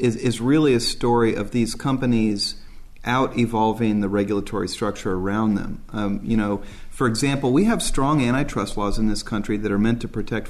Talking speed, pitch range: 185 wpm, 105-130 Hz